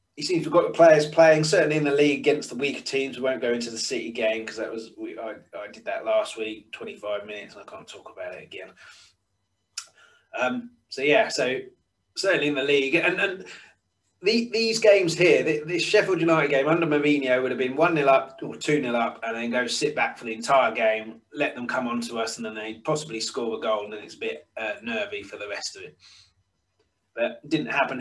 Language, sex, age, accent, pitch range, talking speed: English, male, 20-39, British, 115-170 Hz, 230 wpm